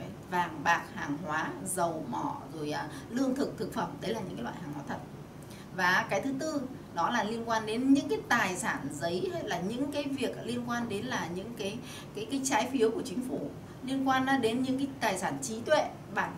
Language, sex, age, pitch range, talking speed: Vietnamese, female, 20-39, 195-275 Hz, 225 wpm